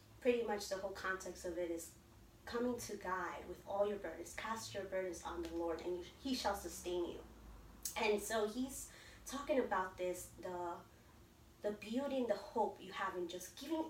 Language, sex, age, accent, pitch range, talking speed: English, female, 20-39, American, 180-245 Hz, 180 wpm